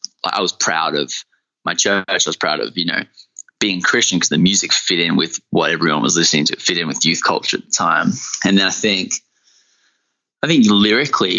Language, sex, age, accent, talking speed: English, male, 20-39, Australian, 215 wpm